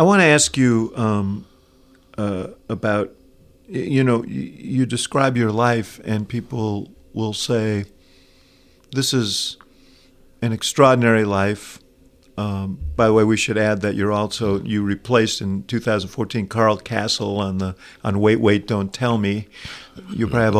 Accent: American